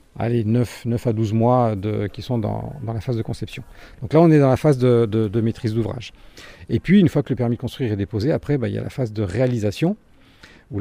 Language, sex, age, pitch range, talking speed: French, male, 40-59, 110-140 Hz, 265 wpm